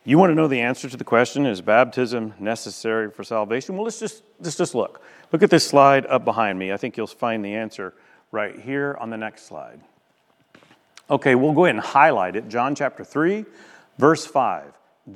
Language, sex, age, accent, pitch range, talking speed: English, male, 40-59, American, 115-190 Hz, 200 wpm